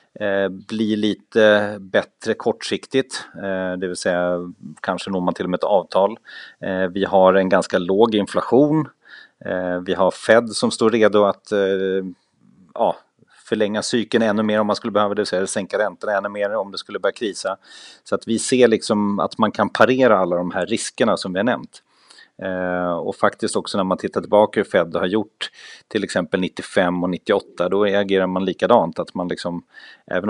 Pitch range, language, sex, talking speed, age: 90-105 Hz, Swedish, male, 180 wpm, 30-49